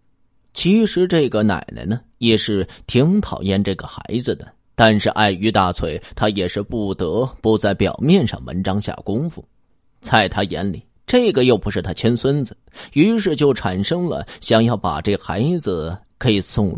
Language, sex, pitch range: Chinese, male, 100-130 Hz